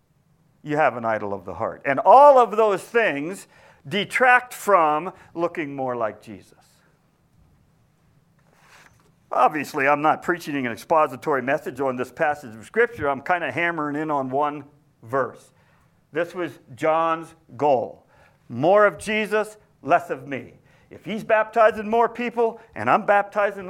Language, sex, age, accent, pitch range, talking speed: English, male, 50-69, American, 140-195 Hz, 140 wpm